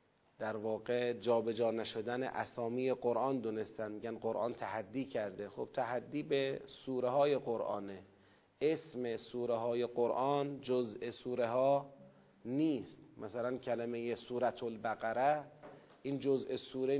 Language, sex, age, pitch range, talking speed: Persian, male, 40-59, 115-135 Hz, 115 wpm